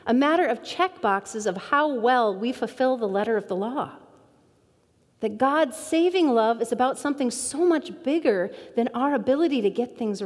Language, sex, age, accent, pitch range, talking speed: English, female, 40-59, American, 215-330 Hz, 175 wpm